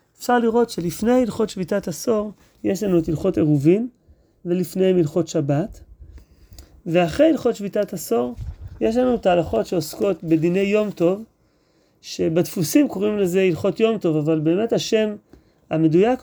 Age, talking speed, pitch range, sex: 30-49, 130 wpm, 165-205 Hz, male